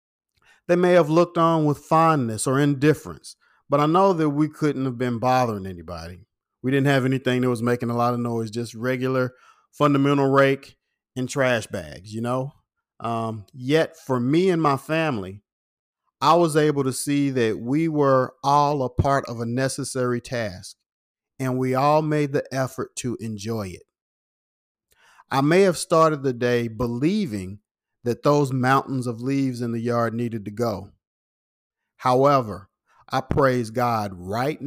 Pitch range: 115-145 Hz